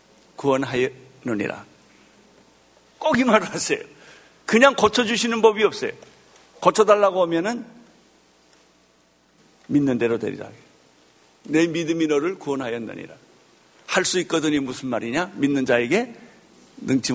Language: Korean